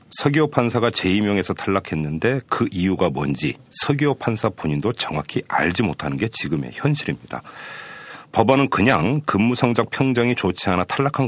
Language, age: Korean, 40-59